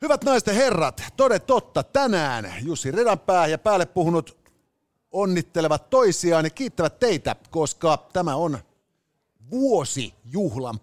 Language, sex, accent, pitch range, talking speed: Finnish, male, native, 135-185 Hz, 110 wpm